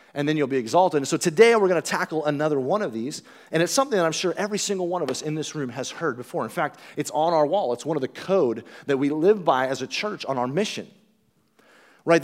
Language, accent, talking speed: English, American, 270 wpm